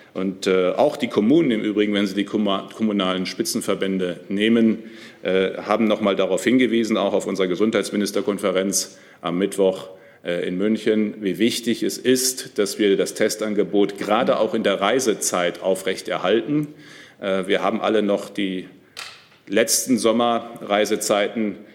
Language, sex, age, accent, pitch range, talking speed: German, male, 40-59, German, 95-115 Hz, 125 wpm